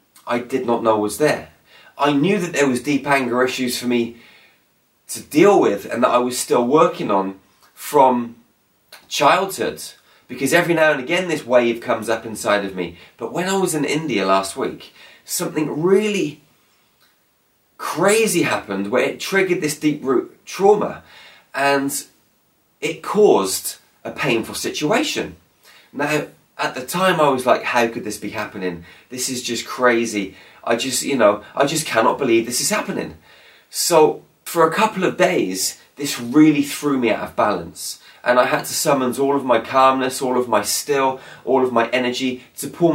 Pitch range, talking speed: 120-150 Hz, 175 wpm